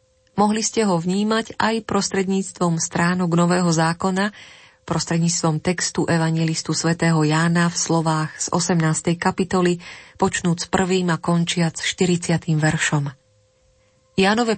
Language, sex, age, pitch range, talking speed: Slovak, female, 30-49, 155-185 Hz, 105 wpm